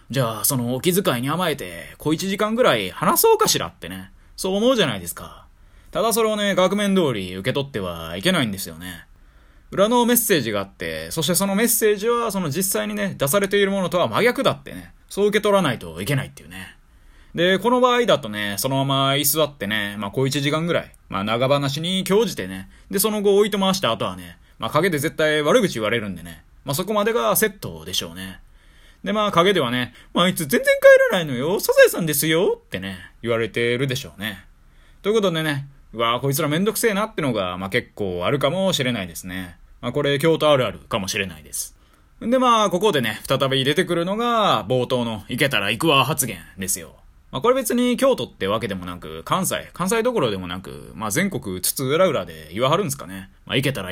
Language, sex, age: Japanese, male, 20-39